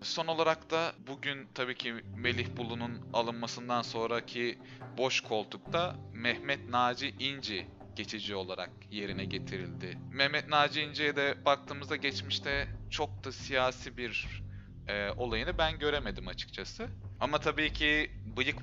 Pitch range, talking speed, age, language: 105-135 Hz, 120 wpm, 30-49, Turkish